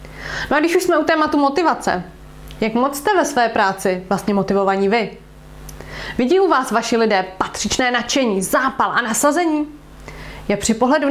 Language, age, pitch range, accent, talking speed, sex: Czech, 20-39, 220-275 Hz, native, 160 wpm, female